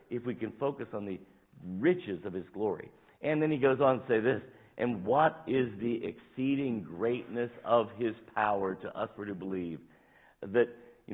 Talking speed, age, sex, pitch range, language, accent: 185 wpm, 50-69, male, 85-135 Hz, English, American